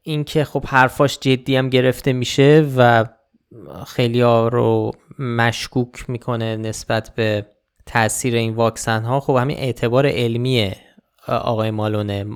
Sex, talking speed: male, 120 wpm